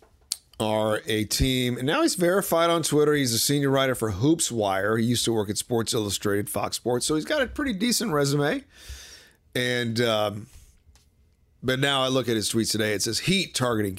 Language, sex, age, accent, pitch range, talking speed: English, male, 40-59, American, 105-150 Hz, 195 wpm